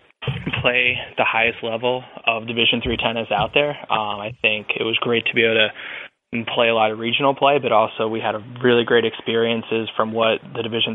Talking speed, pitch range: 205 wpm, 110-120 Hz